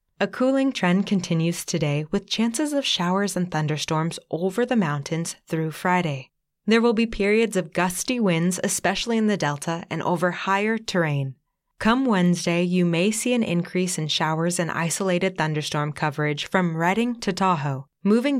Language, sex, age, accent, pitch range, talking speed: English, female, 20-39, American, 155-205 Hz, 160 wpm